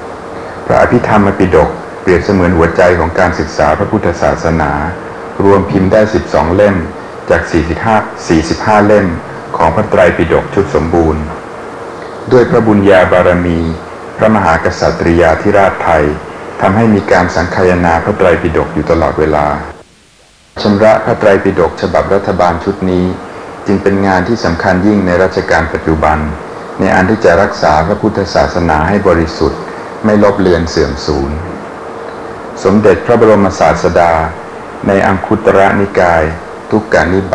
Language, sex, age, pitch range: Thai, male, 60-79, 80-100 Hz